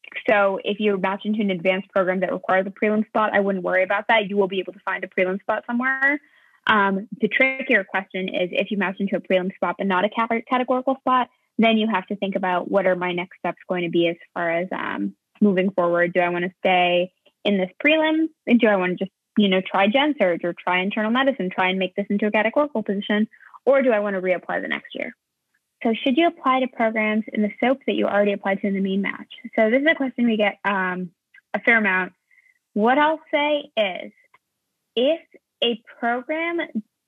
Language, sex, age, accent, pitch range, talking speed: English, female, 20-39, American, 190-245 Hz, 230 wpm